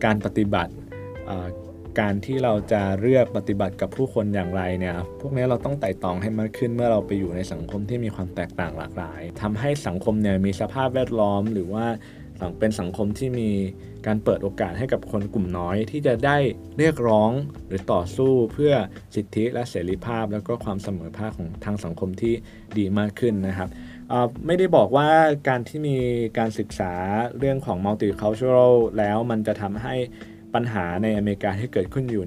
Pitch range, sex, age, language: 95-115 Hz, male, 20-39, Thai